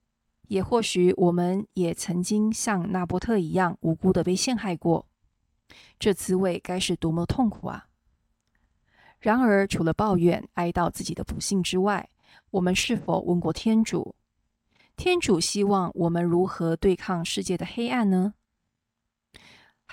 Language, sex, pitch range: Chinese, female, 175-215 Hz